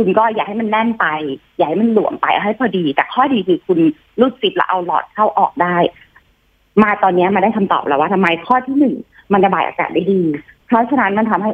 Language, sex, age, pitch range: Thai, female, 30-49, 165-220 Hz